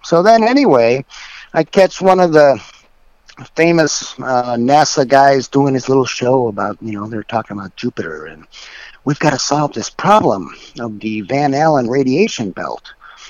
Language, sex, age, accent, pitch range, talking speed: English, male, 50-69, American, 125-160 Hz, 160 wpm